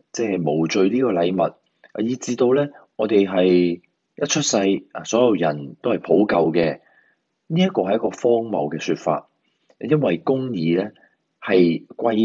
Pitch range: 85-130 Hz